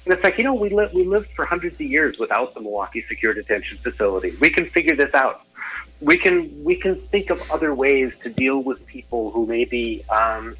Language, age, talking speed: English, 40-59, 220 wpm